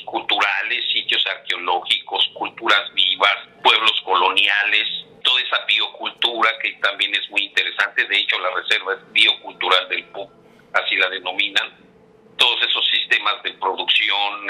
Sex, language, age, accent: male, Spanish, 50-69, Mexican